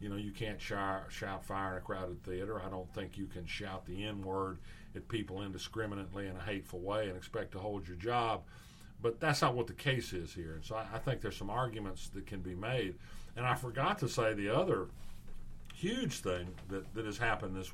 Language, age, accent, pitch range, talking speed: English, 50-69, American, 95-115 Hz, 215 wpm